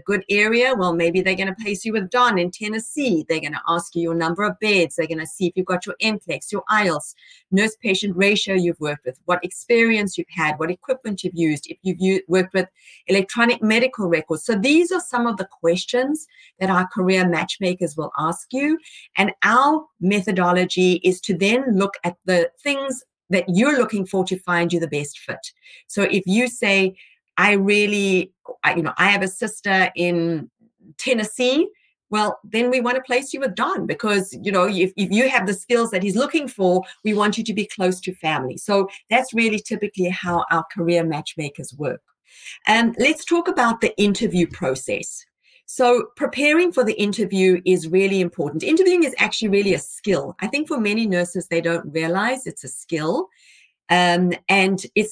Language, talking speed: English, 195 wpm